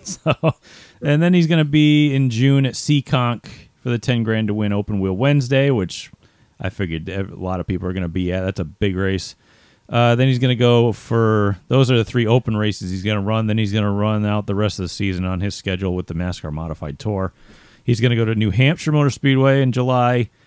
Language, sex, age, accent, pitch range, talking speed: English, male, 40-59, American, 90-125 Hz, 245 wpm